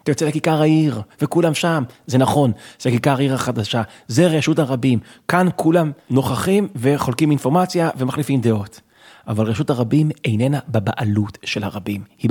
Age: 30-49